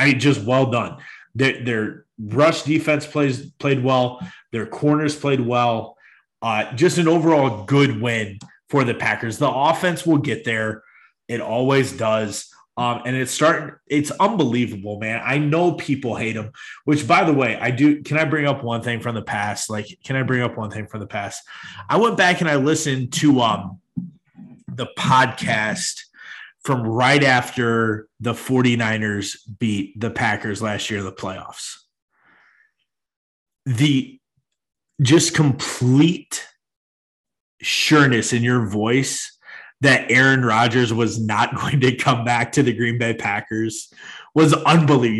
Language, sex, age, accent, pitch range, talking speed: English, male, 30-49, American, 115-150 Hz, 155 wpm